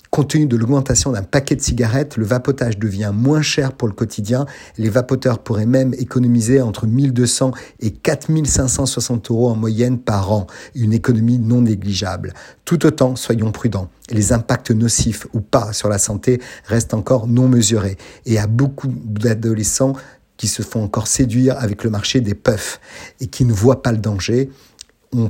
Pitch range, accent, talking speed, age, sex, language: 110-125 Hz, French, 170 wpm, 50-69, male, French